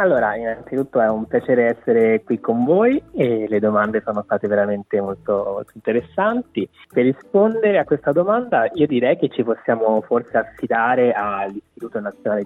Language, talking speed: Italian, 150 wpm